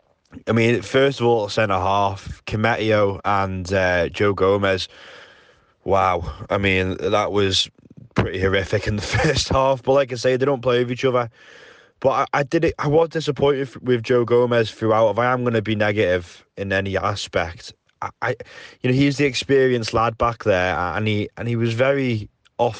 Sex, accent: male, British